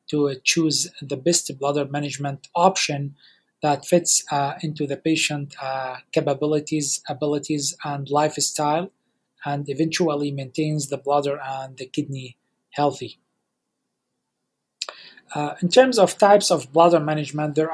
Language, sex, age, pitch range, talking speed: English, male, 30-49, 145-170 Hz, 120 wpm